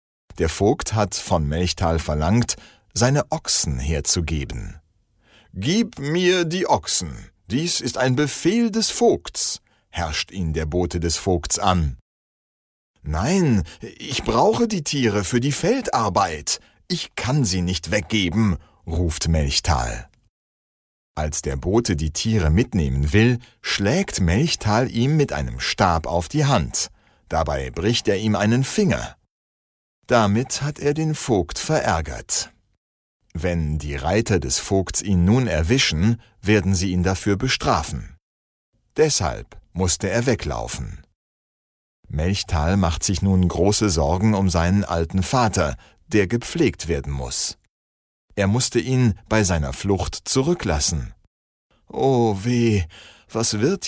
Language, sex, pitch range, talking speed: Slovak, male, 80-120 Hz, 125 wpm